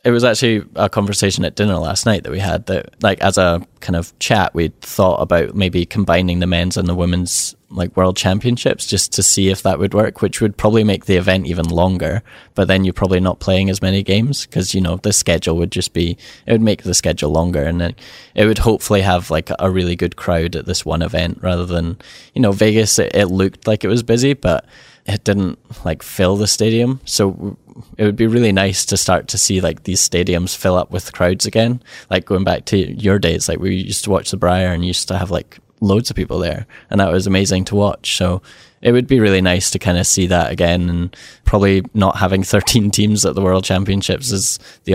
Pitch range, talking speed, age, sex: 90-105 Hz, 230 wpm, 10-29, male